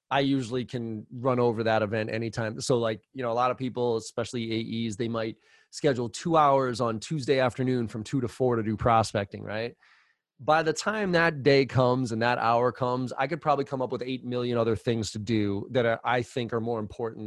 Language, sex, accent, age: English, male, American, 20-39